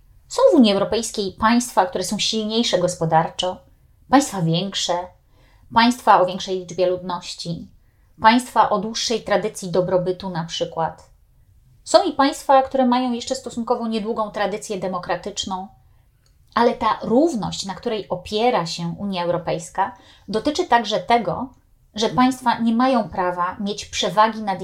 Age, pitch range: 30-49, 180-235 Hz